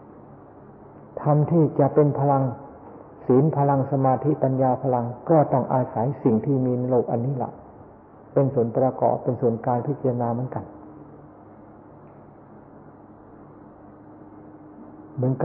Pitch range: 120-145 Hz